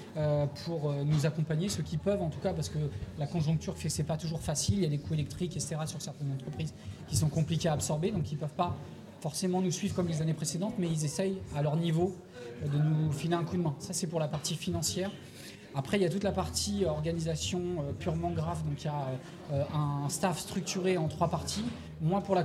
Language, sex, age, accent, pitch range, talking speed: French, male, 20-39, French, 150-180 Hz, 240 wpm